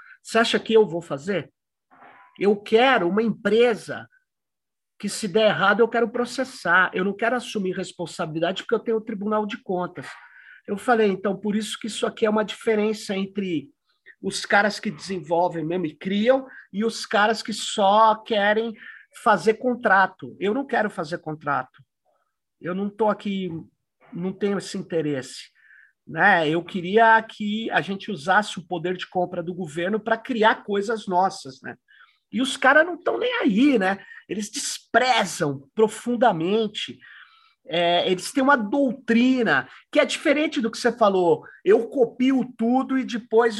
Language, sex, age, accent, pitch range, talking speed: Portuguese, male, 50-69, Brazilian, 195-245 Hz, 160 wpm